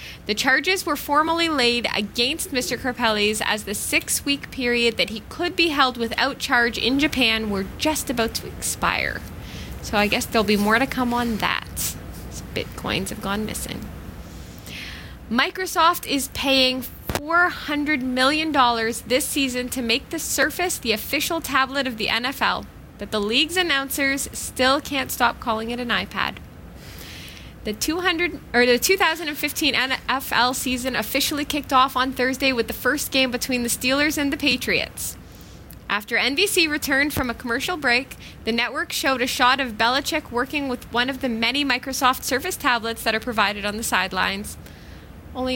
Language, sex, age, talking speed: English, female, 10-29, 160 wpm